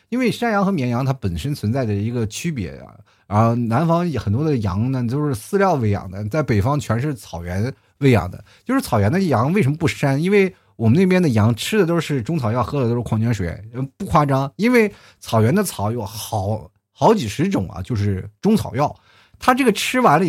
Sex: male